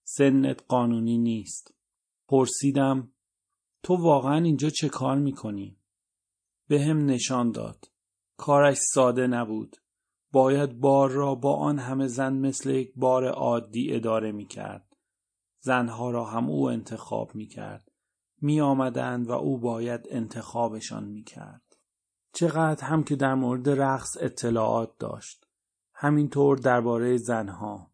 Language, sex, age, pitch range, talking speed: Persian, male, 30-49, 115-140 Hz, 115 wpm